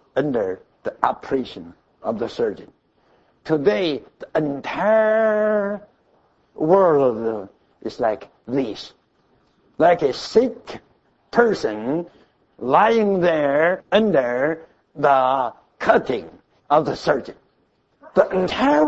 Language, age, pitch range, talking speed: English, 60-79, 155-235 Hz, 85 wpm